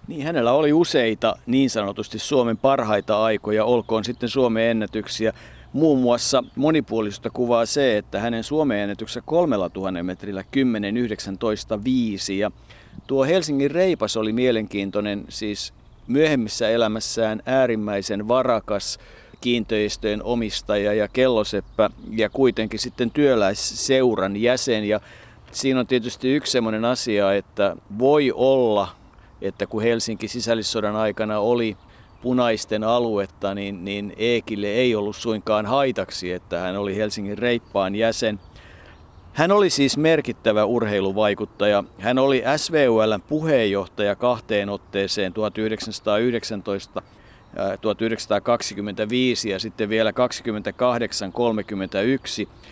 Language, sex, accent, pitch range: Finnish, male, native, 105-125 Hz